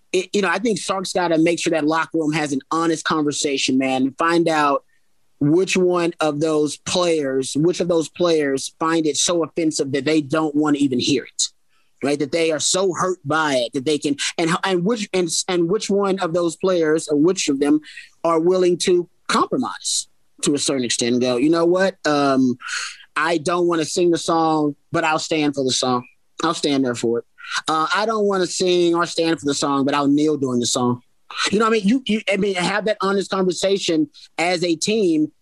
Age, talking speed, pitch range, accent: 30-49, 215 wpm, 150-185 Hz, American